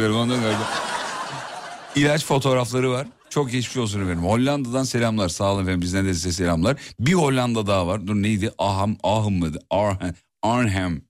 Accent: native